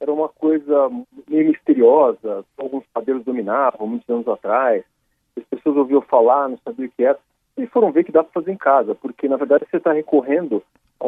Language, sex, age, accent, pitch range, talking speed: Portuguese, male, 40-59, Brazilian, 130-175 Hz, 195 wpm